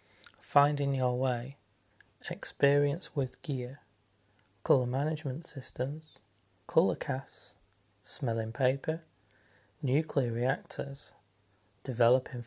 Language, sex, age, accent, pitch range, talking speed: English, male, 30-49, British, 120-135 Hz, 75 wpm